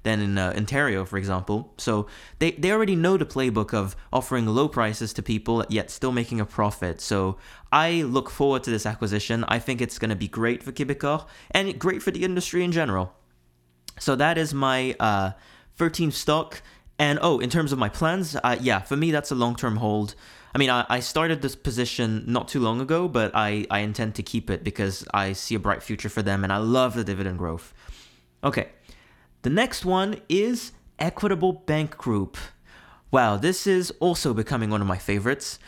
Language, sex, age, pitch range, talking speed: English, male, 20-39, 105-160 Hz, 200 wpm